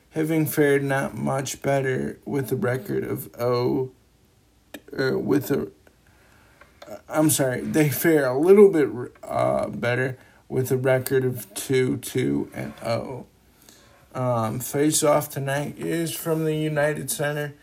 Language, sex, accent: English, male, American